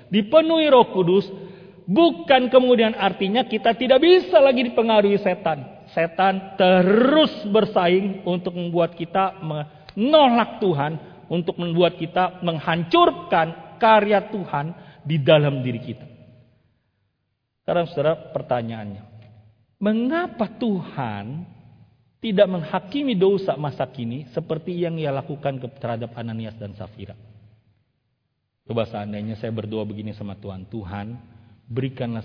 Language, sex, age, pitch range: Indonesian, male, 40-59, 115-195 Hz